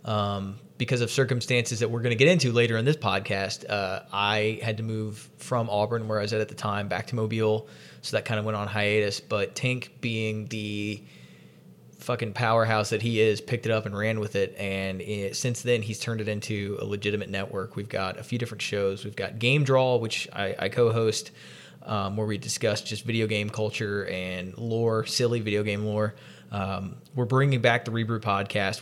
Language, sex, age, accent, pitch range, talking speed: English, male, 20-39, American, 100-115 Hz, 205 wpm